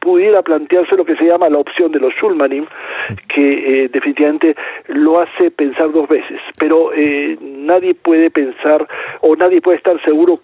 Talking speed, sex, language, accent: 165 wpm, male, Spanish, Argentinian